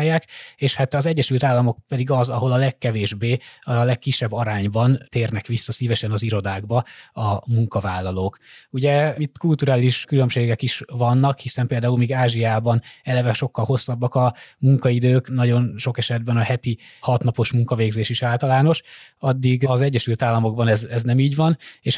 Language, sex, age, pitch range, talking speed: Hungarian, male, 20-39, 115-130 Hz, 145 wpm